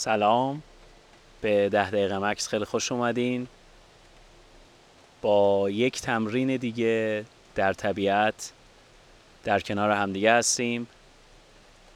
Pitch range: 100-120 Hz